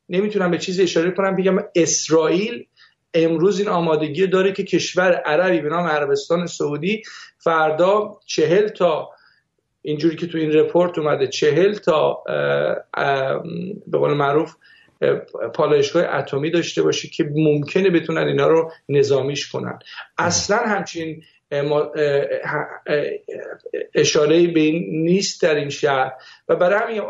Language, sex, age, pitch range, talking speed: Persian, male, 50-69, 160-220 Hz, 115 wpm